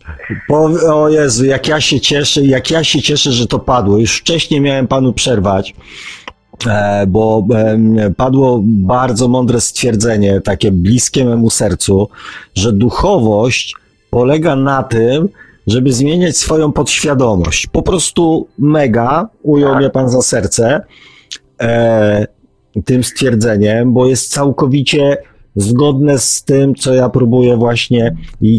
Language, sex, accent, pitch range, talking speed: Polish, male, native, 110-140 Hz, 120 wpm